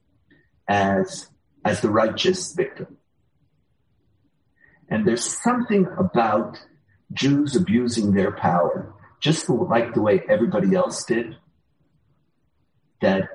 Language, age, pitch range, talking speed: English, 50-69, 140-190 Hz, 95 wpm